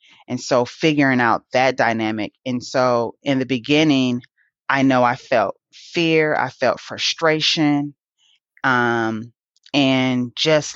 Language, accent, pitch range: English, American, 125-145 Hz